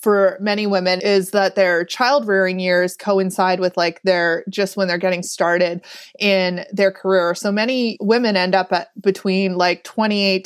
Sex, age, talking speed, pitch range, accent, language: female, 20-39, 170 wpm, 185-215 Hz, American, English